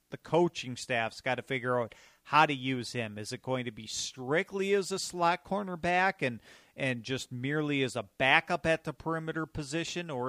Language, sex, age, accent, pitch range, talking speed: English, male, 40-59, American, 125-155 Hz, 190 wpm